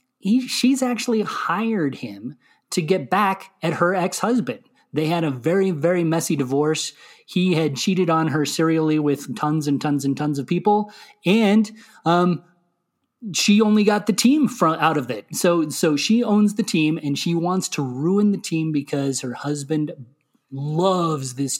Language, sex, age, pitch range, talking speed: English, male, 30-49, 140-180 Hz, 170 wpm